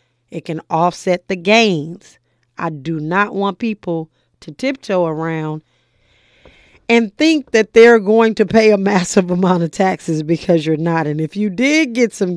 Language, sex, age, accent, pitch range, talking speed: English, female, 40-59, American, 170-210 Hz, 165 wpm